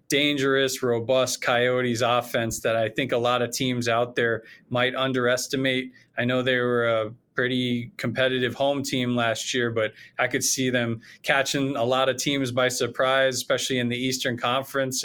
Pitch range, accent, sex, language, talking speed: 115-130 Hz, American, male, English, 170 wpm